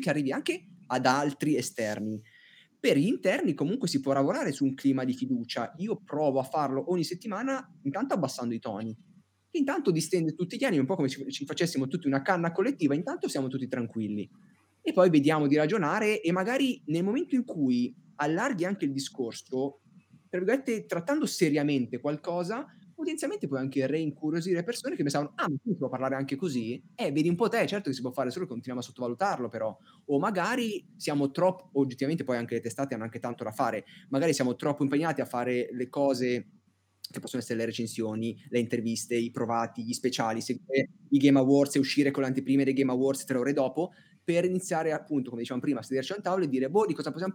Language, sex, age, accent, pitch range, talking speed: Italian, male, 20-39, native, 130-180 Hz, 200 wpm